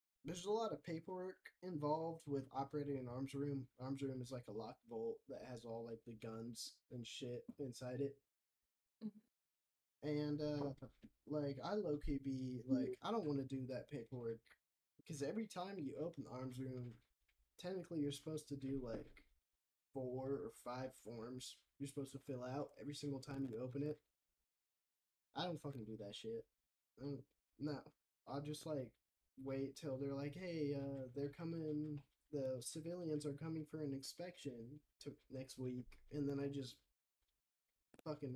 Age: 10-29